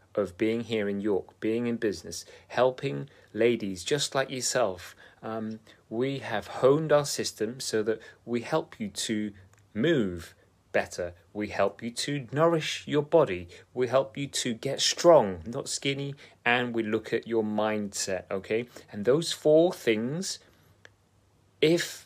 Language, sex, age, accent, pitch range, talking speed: English, male, 30-49, British, 105-130 Hz, 145 wpm